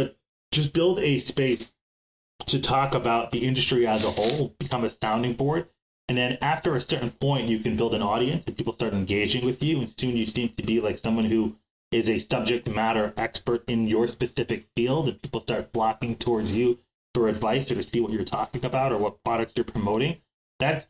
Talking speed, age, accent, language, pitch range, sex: 205 wpm, 30-49, American, English, 110-130 Hz, male